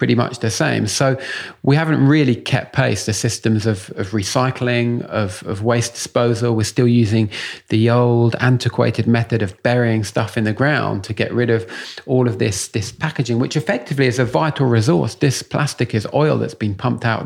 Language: English